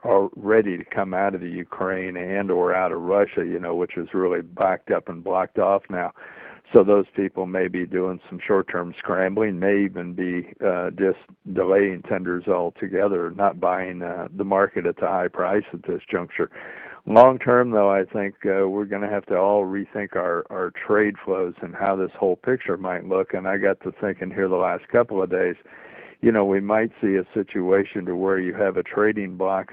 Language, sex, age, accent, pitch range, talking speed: English, male, 60-79, American, 95-105 Hz, 205 wpm